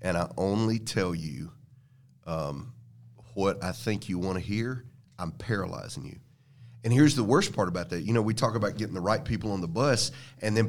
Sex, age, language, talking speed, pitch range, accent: male, 40-59, English, 210 wpm, 100-130 Hz, American